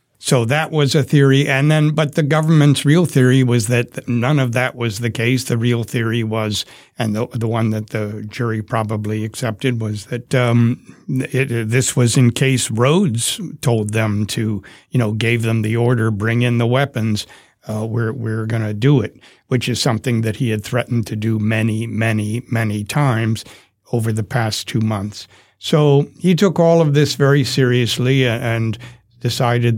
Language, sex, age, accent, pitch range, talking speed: English, male, 60-79, American, 110-135 Hz, 180 wpm